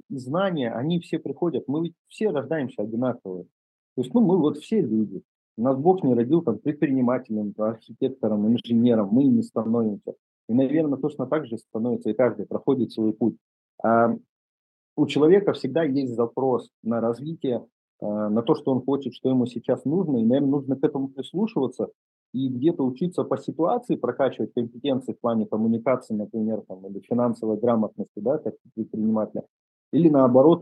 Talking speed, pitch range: 155 wpm, 115-145 Hz